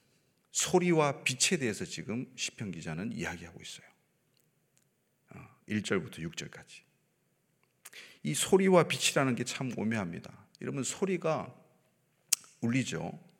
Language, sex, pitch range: Korean, male, 120-180 Hz